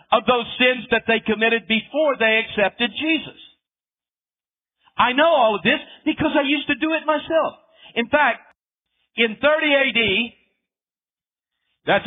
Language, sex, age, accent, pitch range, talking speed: English, male, 50-69, American, 215-270 Hz, 140 wpm